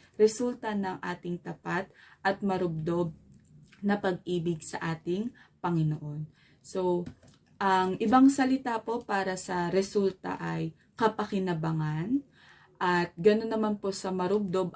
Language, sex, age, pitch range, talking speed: Filipino, female, 20-39, 165-210 Hz, 110 wpm